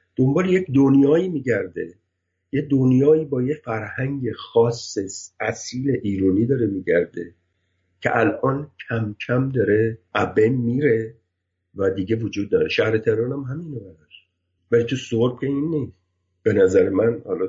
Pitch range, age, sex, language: 95-140 Hz, 50-69, male, Persian